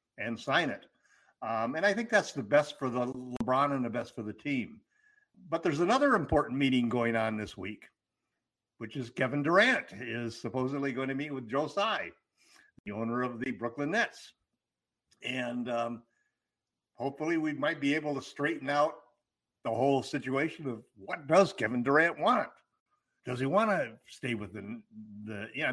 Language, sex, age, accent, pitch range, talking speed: English, male, 60-79, American, 120-155 Hz, 175 wpm